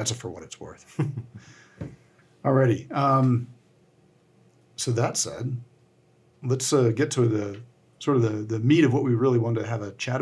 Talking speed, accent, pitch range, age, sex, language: 170 wpm, American, 105-125 Hz, 50-69, male, English